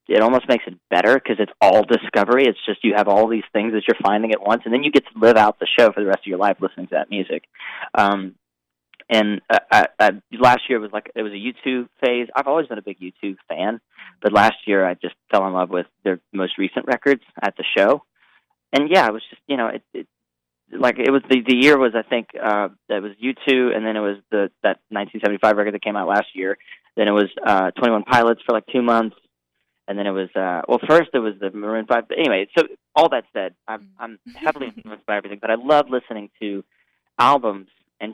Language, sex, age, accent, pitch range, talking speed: English, male, 20-39, American, 100-120 Hz, 240 wpm